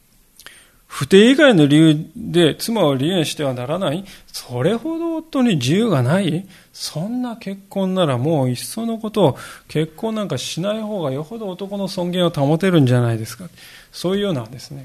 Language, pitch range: Japanese, 135-190 Hz